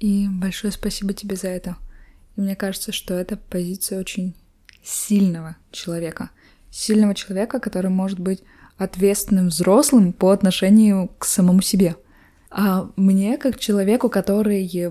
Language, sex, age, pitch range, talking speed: Russian, female, 20-39, 195-255 Hz, 130 wpm